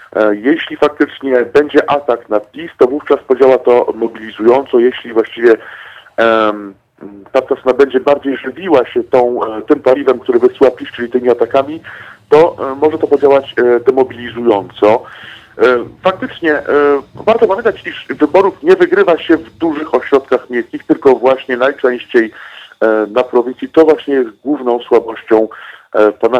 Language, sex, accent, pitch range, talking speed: Polish, male, native, 120-160 Hz, 140 wpm